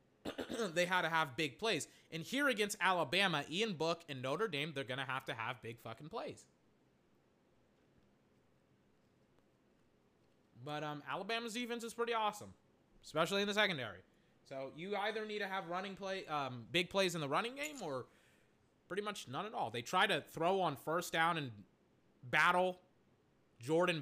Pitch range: 140-210 Hz